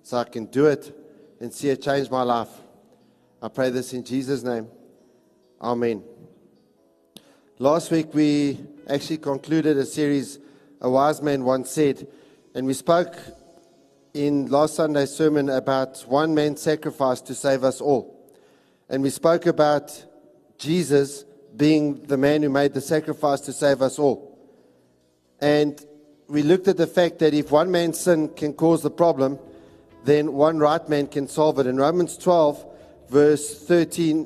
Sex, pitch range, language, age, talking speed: male, 140-165 Hz, English, 50-69, 150 wpm